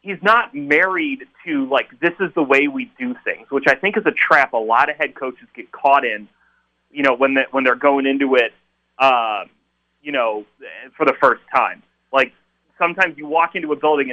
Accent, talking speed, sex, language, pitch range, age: American, 200 wpm, male, English, 125-180 Hz, 30-49